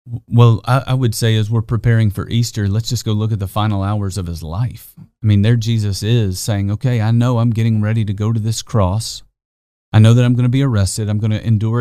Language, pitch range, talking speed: English, 105-125 Hz, 250 wpm